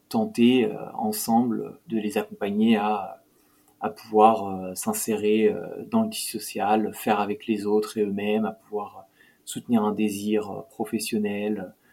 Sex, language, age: male, French, 20-39